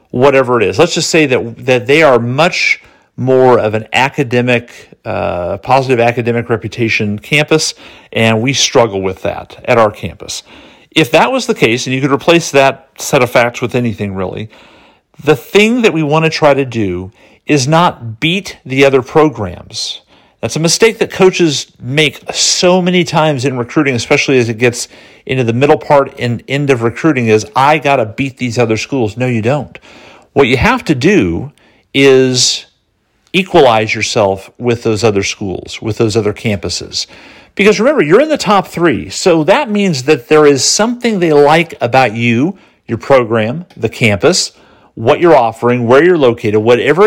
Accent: American